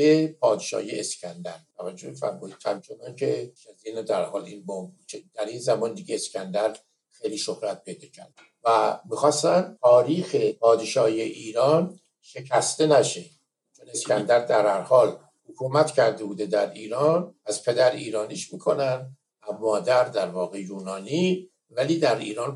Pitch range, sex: 110-180 Hz, male